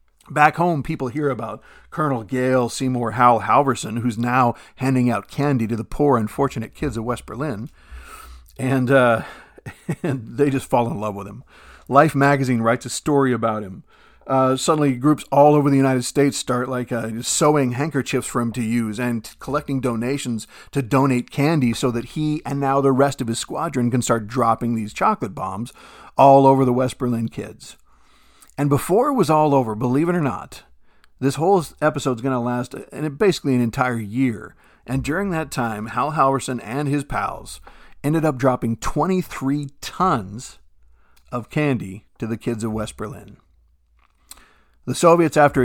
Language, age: English, 40-59